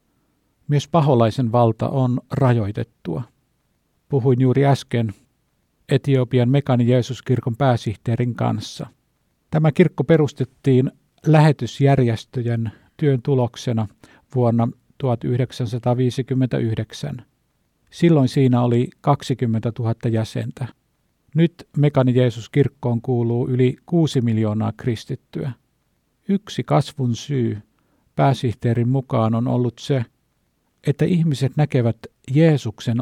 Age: 50-69